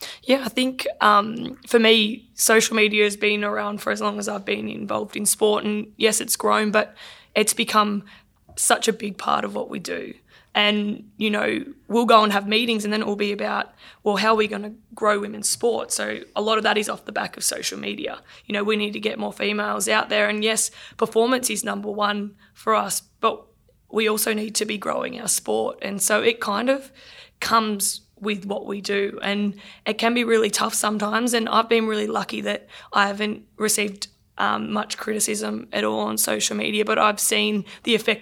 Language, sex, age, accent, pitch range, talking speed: English, female, 20-39, Australian, 205-220 Hz, 215 wpm